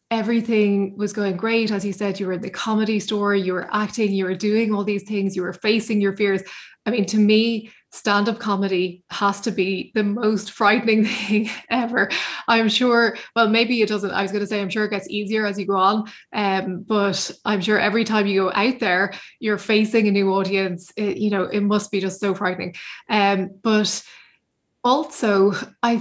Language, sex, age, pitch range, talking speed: English, female, 20-39, 195-215 Hz, 205 wpm